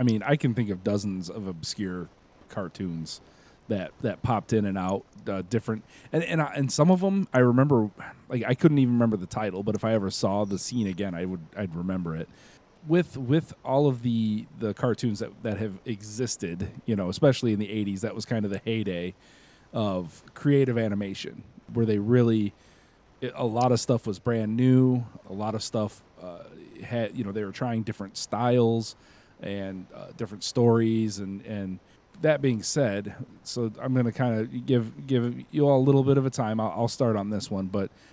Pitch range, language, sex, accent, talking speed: 100-125 Hz, English, male, American, 205 wpm